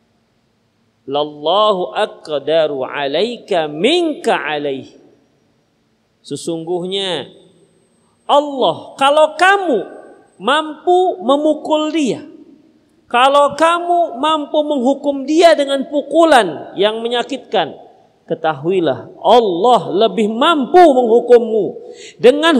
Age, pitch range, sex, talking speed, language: 50-69, 210-305 Hz, male, 70 wpm, Indonesian